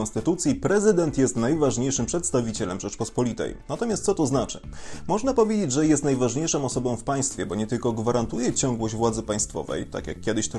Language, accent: Polish, native